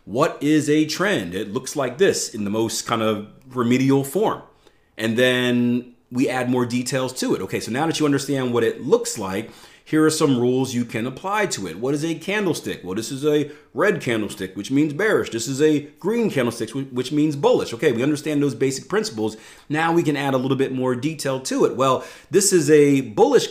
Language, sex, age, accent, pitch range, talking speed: English, male, 30-49, American, 110-145 Hz, 215 wpm